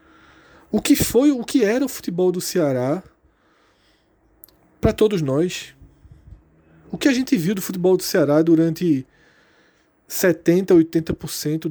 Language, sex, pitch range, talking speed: Portuguese, male, 135-180 Hz, 130 wpm